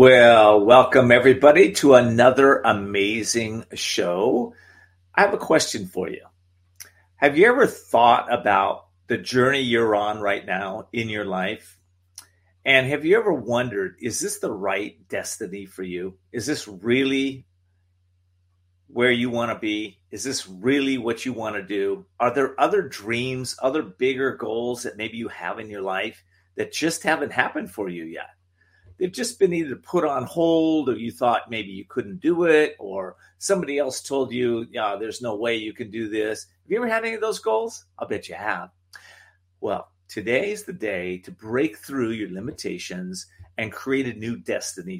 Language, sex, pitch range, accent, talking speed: English, male, 95-135 Hz, American, 175 wpm